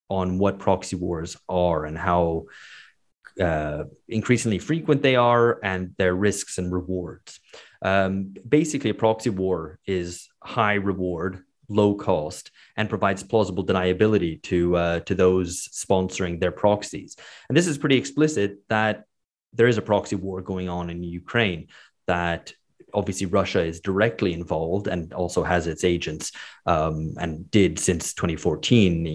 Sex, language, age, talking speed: male, English, 30-49, 140 wpm